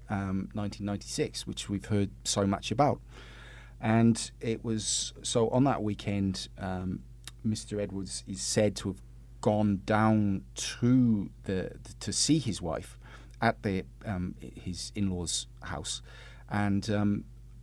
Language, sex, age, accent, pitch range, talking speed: English, male, 30-49, British, 95-120 Hz, 135 wpm